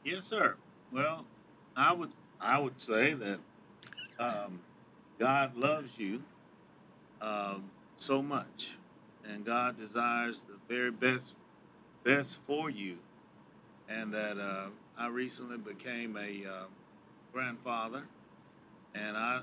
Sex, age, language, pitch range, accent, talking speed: male, 40-59, English, 110-130 Hz, American, 110 wpm